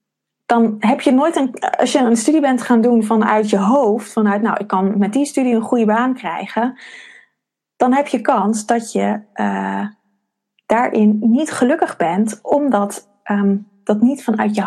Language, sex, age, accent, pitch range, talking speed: Dutch, female, 20-39, Dutch, 200-240 Hz, 170 wpm